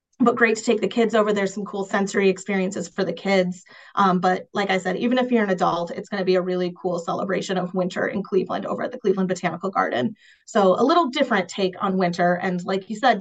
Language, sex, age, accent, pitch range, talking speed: English, female, 30-49, American, 185-220 Hz, 245 wpm